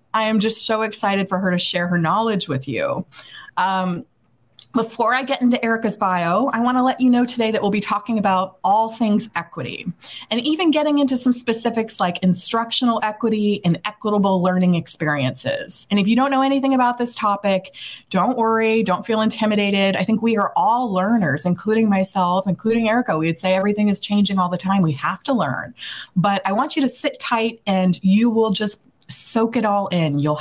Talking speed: 200 wpm